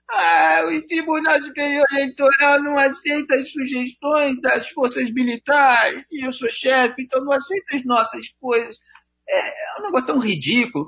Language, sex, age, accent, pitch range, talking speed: Portuguese, male, 40-59, Brazilian, 185-270 Hz, 155 wpm